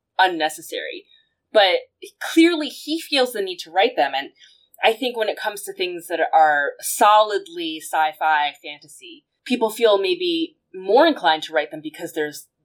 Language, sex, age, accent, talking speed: English, female, 20-39, American, 155 wpm